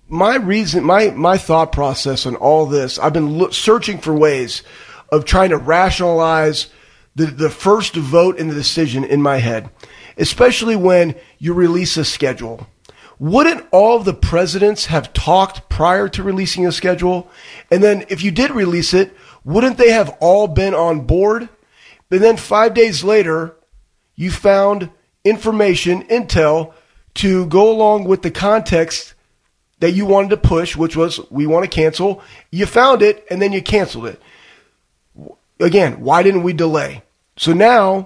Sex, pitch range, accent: male, 160-210 Hz, American